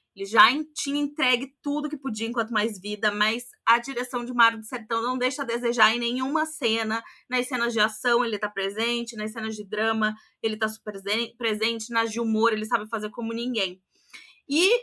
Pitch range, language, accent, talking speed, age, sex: 225-285 Hz, Portuguese, Brazilian, 200 wpm, 20-39, female